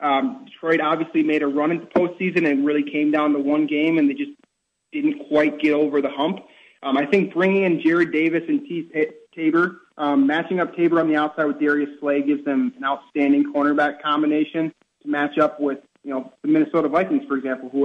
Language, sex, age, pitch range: English, male, 30-49, 145-175 Hz